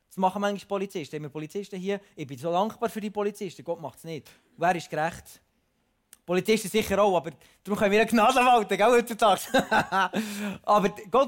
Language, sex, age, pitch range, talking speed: German, male, 30-49, 170-220 Hz, 165 wpm